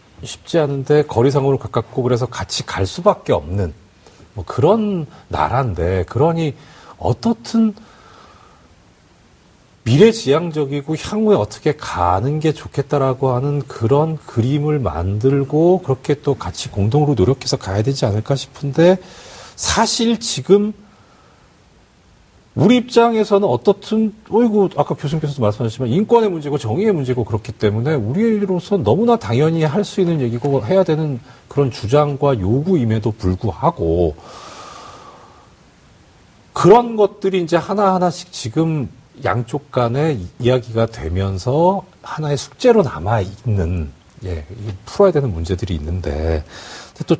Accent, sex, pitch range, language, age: native, male, 115-185 Hz, Korean, 40-59